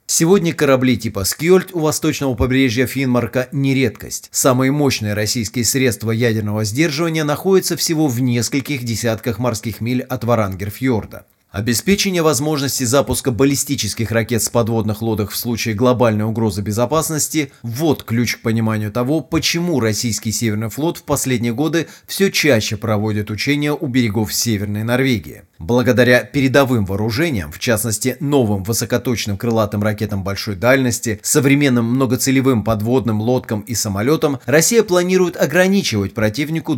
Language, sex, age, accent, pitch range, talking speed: Russian, male, 30-49, native, 110-145 Hz, 130 wpm